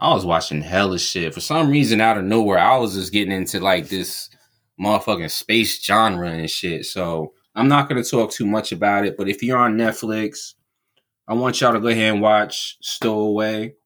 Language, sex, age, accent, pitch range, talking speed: English, male, 20-39, American, 95-115 Hz, 205 wpm